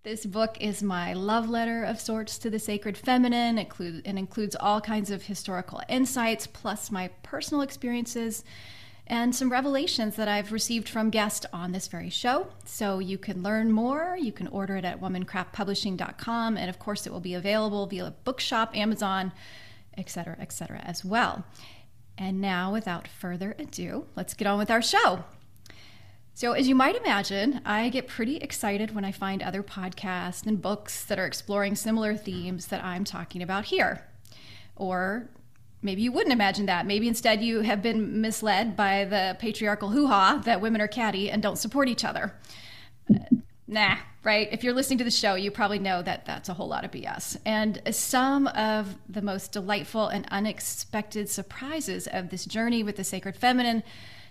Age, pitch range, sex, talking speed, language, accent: 30-49, 190-225 Hz, female, 175 wpm, English, American